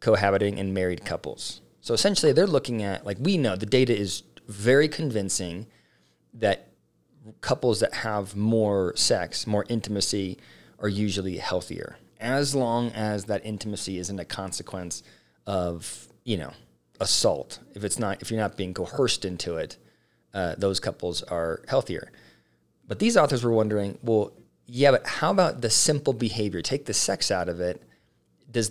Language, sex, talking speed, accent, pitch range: English, male, 155 wpm, American, 90-115 Hz